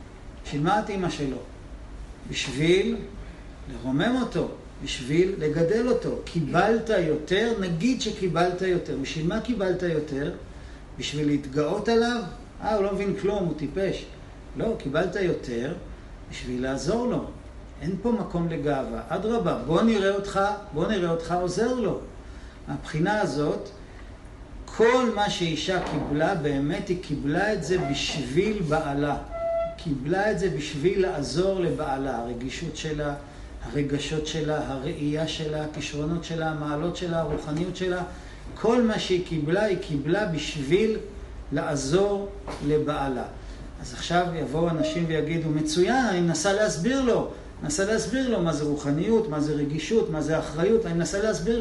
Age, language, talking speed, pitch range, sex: 50-69, Hebrew, 130 wpm, 150-200 Hz, male